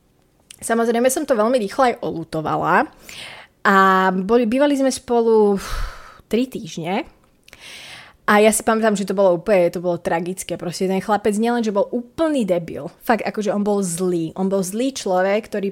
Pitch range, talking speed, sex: 185-220 Hz, 170 wpm, female